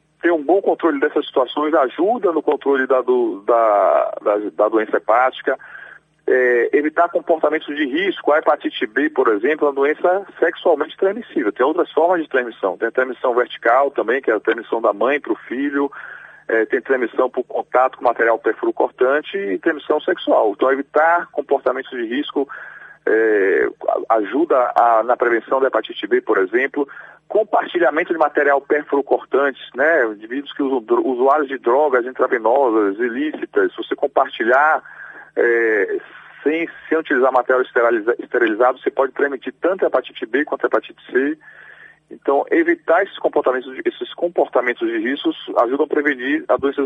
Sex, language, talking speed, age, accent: male, Portuguese, 155 wpm, 40-59, Brazilian